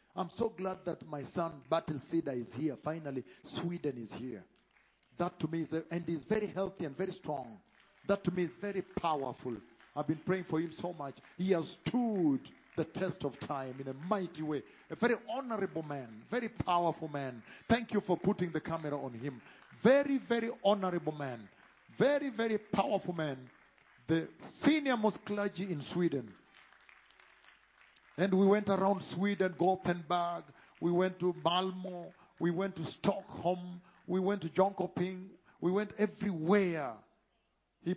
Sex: male